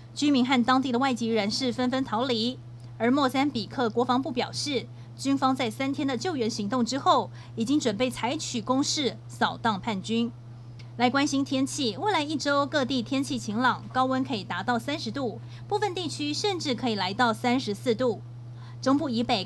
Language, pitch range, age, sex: Chinese, 210-270 Hz, 20-39, female